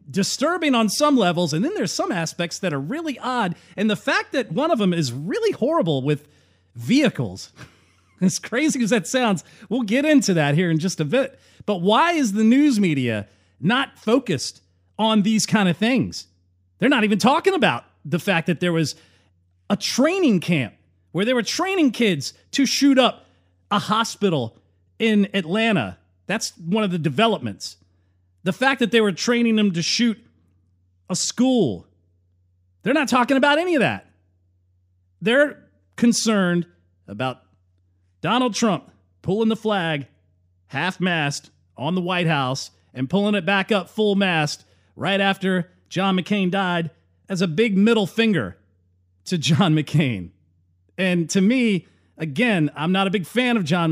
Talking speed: 160 wpm